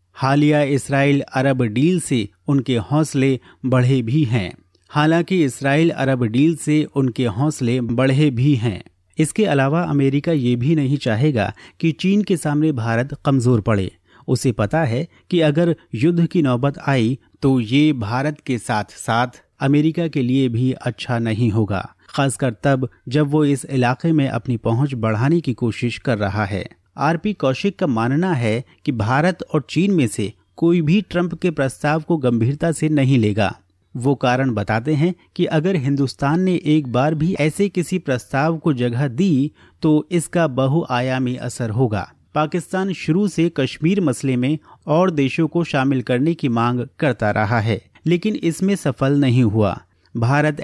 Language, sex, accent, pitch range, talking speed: Hindi, male, native, 120-155 Hz, 160 wpm